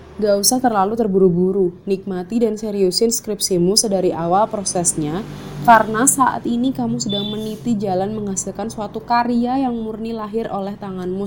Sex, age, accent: female, 20-39, native